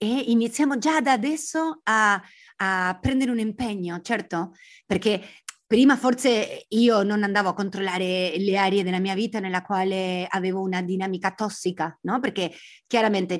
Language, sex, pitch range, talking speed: Italian, female, 185-245 Hz, 150 wpm